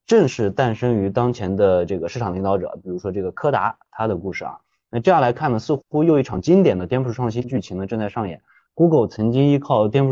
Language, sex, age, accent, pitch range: Chinese, male, 20-39, native, 100-130 Hz